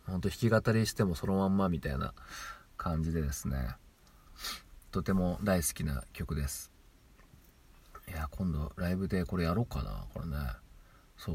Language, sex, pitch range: Japanese, male, 80-100 Hz